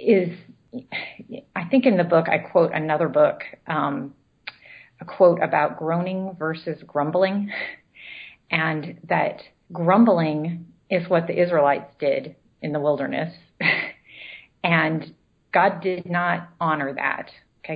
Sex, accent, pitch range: female, American, 155-190 Hz